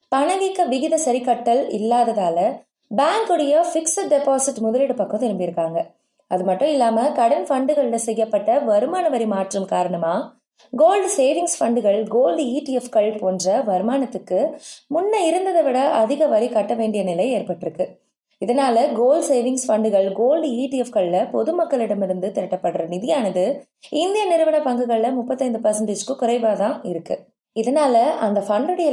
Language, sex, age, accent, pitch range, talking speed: Tamil, female, 20-39, native, 205-295 Hz, 115 wpm